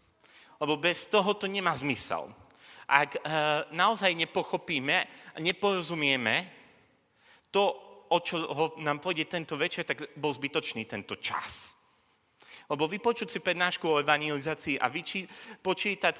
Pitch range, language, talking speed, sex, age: 140-185 Hz, Slovak, 110 wpm, male, 30-49